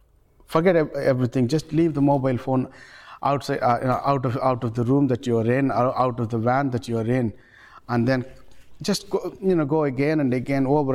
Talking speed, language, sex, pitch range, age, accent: 215 wpm, English, male, 115-140 Hz, 60-79, Indian